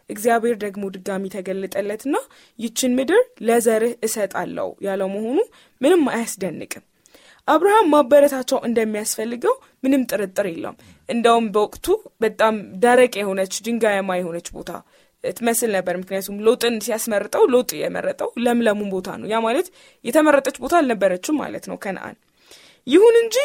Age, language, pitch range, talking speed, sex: 20-39, Amharic, 200-290 Hz, 115 wpm, female